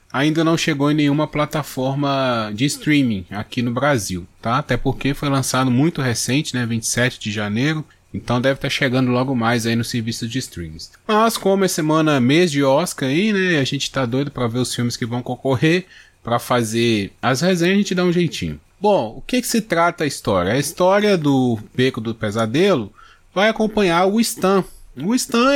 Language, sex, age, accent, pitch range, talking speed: Portuguese, male, 20-39, Brazilian, 125-175 Hz, 195 wpm